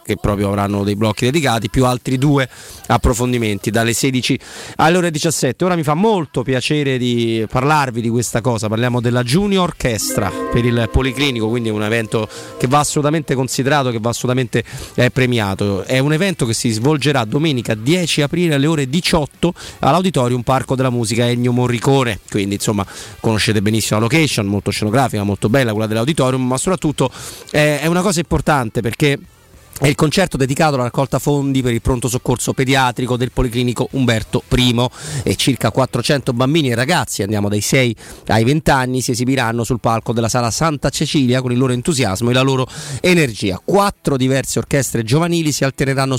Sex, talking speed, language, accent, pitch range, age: male, 170 wpm, Italian, native, 115-150 Hz, 30-49